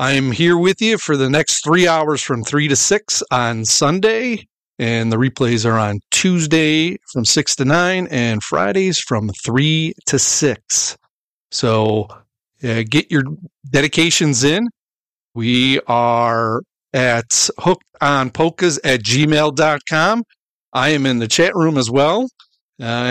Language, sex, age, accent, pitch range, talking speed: English, male, 40-59, American, 125-160 Hz, 140 wpm